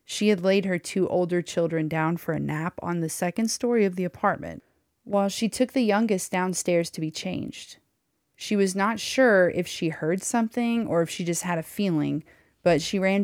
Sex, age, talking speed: female, 30-49, 205 wpm